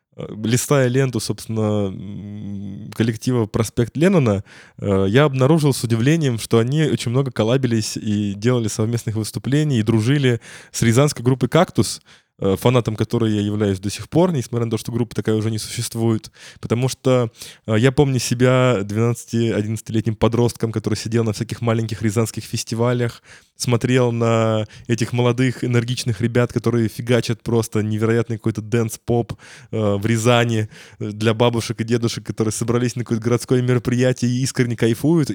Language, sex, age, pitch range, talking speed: Russian, male, 20-39, 110-130 Hz, 140 wpm